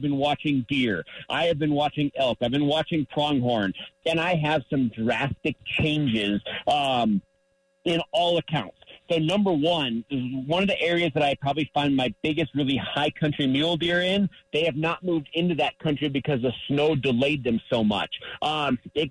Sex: male